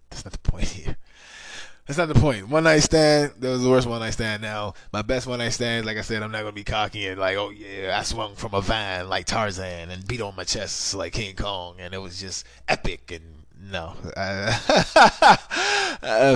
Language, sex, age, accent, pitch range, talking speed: English, male, 20-39, American, 90-125 Hz, 220 wpm